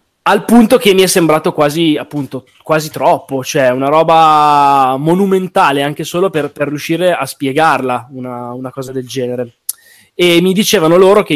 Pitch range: 135-165 Hz